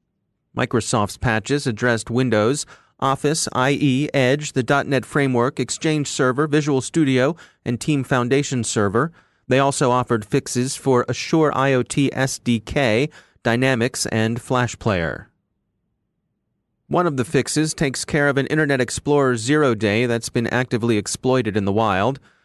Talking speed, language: 130 wpm, English